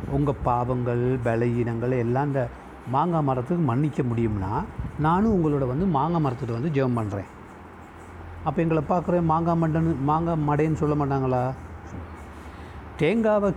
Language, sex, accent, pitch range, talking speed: Tamil, male, native, 120-165 Hz, 120 wpm